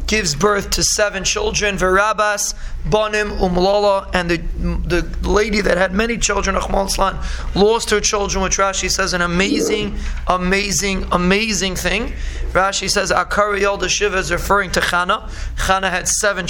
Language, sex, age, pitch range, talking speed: English, male, 30-49, 180-205 Hz, 145 wpm